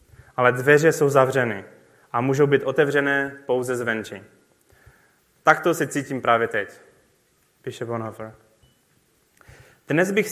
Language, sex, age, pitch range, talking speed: Czech, male, 20-39, 135-175 Hz, 110 wpm